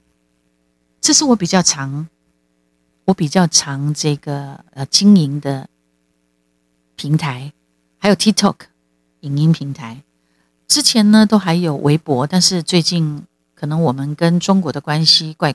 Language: Chinese